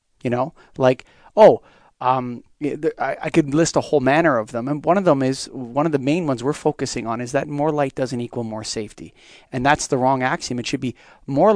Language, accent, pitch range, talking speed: English, American, 130-165 Hz, 225 wpm